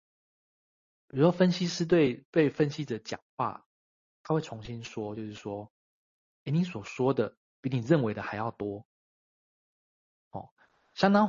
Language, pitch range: Chinese, 110-150 Hz